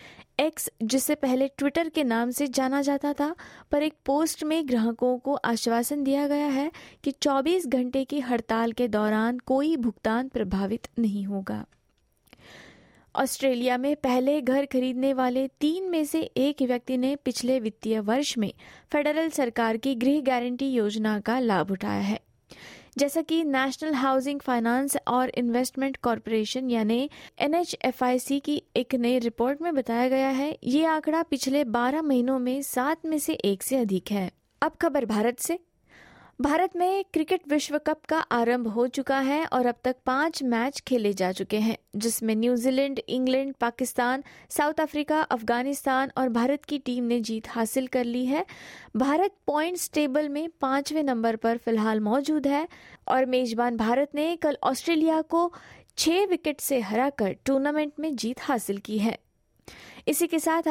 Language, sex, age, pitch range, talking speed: Hindi, female, 20-39, 240-295 Hz, 155 wpm